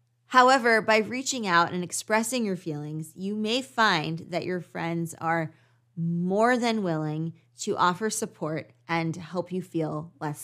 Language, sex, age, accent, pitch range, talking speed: English, female, 20-39, American, 160-210 Hz, 150 wpm